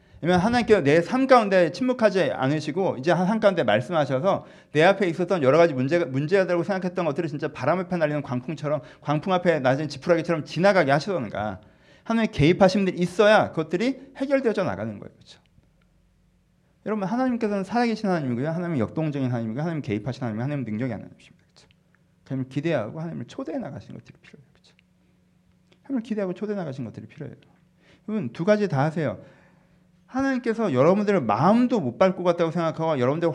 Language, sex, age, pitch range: Korean, male, 40-59, 140-205 Hz